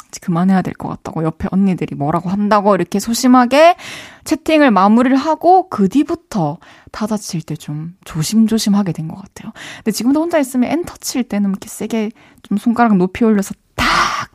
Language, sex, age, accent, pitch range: Korean, female, 20-39, native, 175-255 Hz